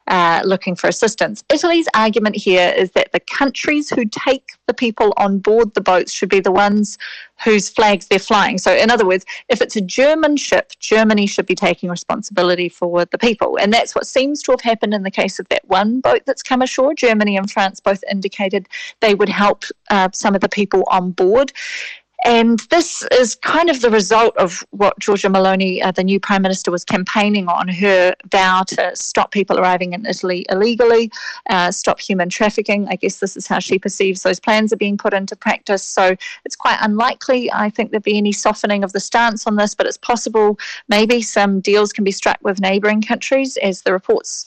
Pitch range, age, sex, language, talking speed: 190-230 Hz, 30-49, female, English, 205 wpm